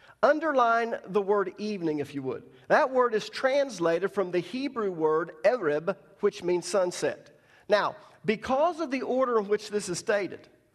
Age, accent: 50-69, American